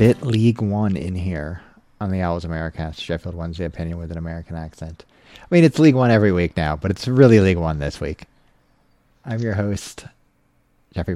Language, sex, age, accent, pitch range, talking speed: English, male, 30-49, American, 85-115 Hz, 190 wpm